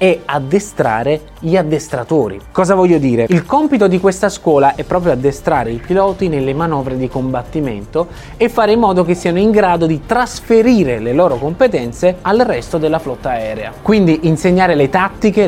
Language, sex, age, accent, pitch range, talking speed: Italian, male, 20-39, native, 130-195 Hz, 165 wpm